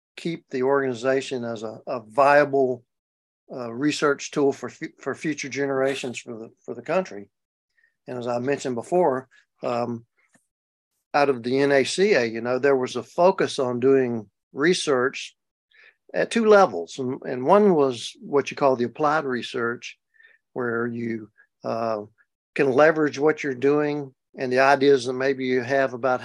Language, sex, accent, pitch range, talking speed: English, male, American, 120-150 Hz, 155 wpm